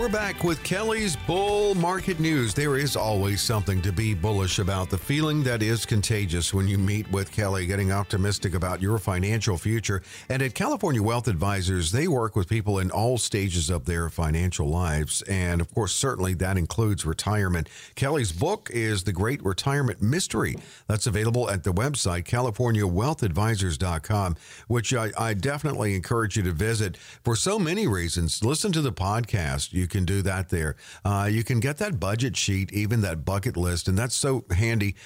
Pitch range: 95-120 Hz